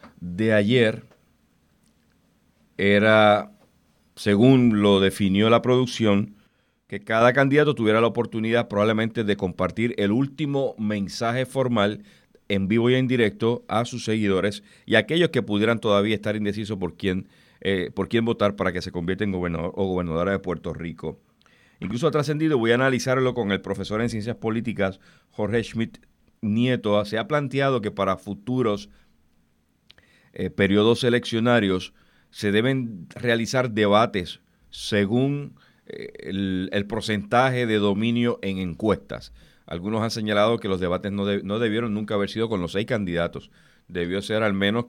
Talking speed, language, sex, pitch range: 150 wpm, Spanish, male, 95-120 Hz